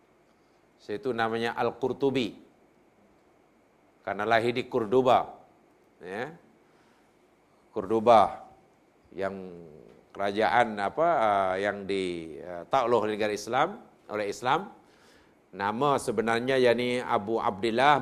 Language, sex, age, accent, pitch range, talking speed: Malayalam, male, 50-69, Indonesian, 115-160 Hz, 75 wpm